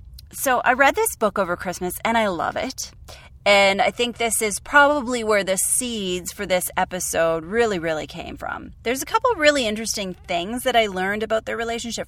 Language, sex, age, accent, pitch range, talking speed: English, female, 30-49, American, 185-255 Hz, 195 wpm